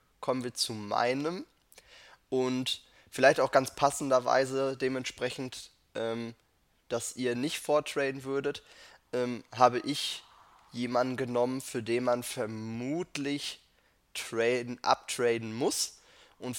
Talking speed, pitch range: 100 wpm, 115-135 Hz